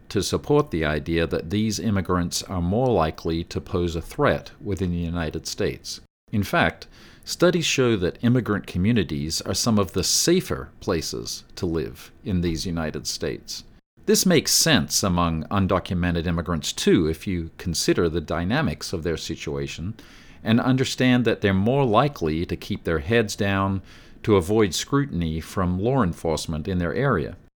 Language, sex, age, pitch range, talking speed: English, male, 50-69, 85-115 Hz, 155 wpm